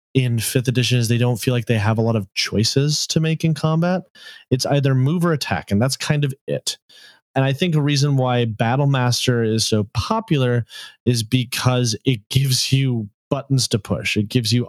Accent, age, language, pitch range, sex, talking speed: American, 30-49, English, 115-145 Hz, male, 200 wpm